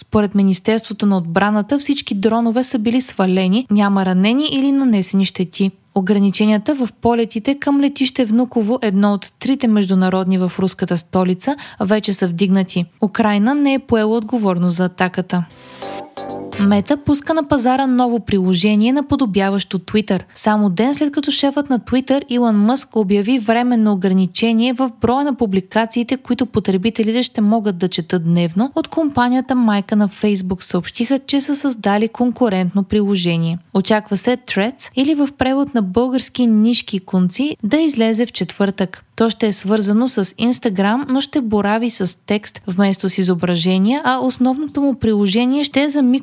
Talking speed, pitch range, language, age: 155 wpm, 195-255 Hz, Bulgarian, 20-39